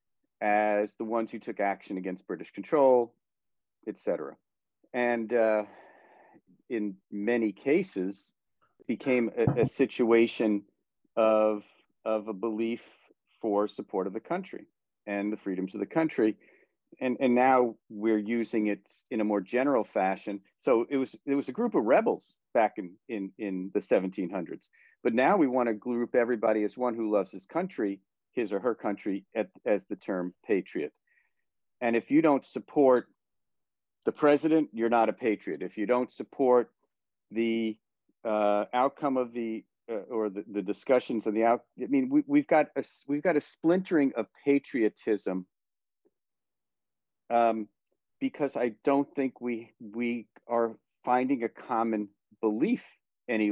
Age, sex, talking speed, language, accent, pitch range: 40-59, male, 150 wpm, English, American, 105-130 Hz